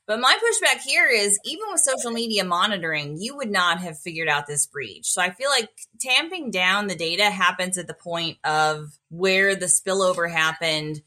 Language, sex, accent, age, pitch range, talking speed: English, female, American, 20-39, 170-225 Hz, 190 wpm